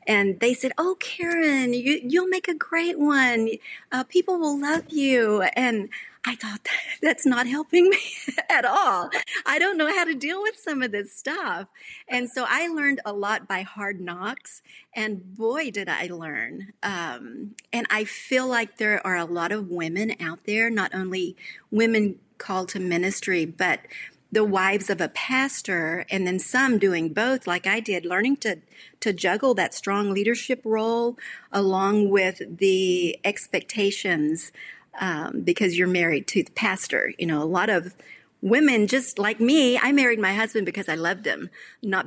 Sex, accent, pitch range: female, American, 185-260 Hz